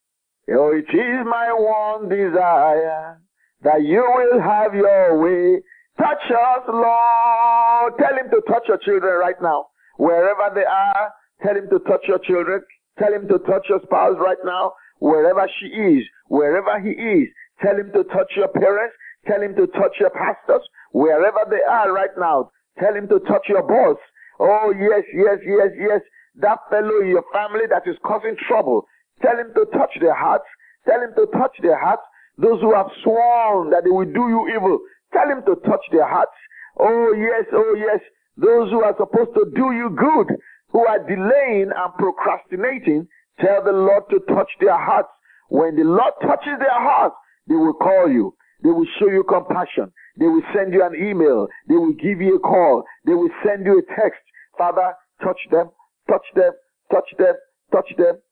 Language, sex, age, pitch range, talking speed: English, male, 50-69, 195-320 Hz, 180 wpm